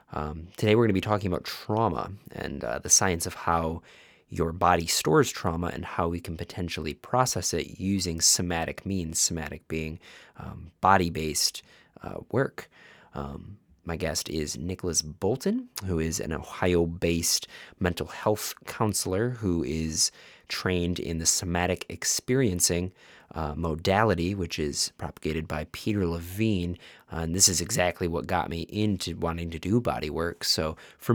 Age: 20-39